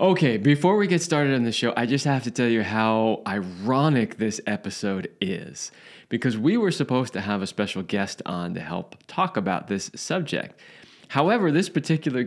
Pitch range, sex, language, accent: 100-145 Hz, male, English, American